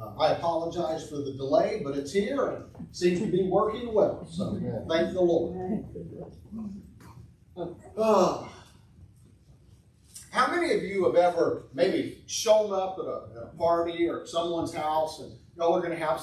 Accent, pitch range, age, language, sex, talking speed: American, 155-220 Hz, 50-69, English, male, 165 wpm